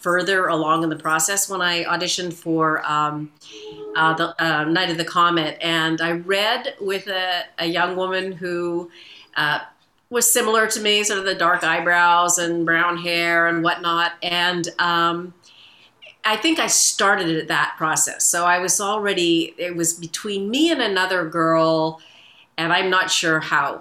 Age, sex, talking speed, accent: 40-59, female, 165 wpm, American